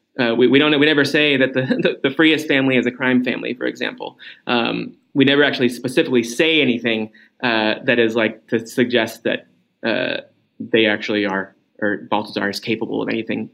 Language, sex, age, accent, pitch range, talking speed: English, male, 20-39, American, 110-125 Hz, 190 wpm